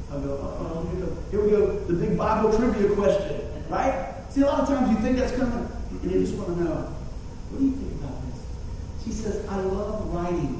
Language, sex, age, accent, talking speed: English, male, 40-59, American, 240 wpm